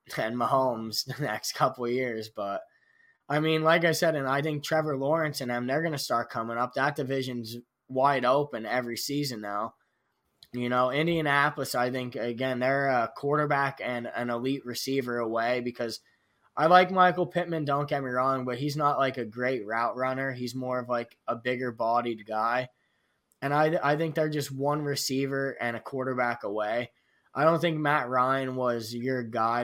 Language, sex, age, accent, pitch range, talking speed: English, male, 20-39, American, 120-140 Hz, 185 wpm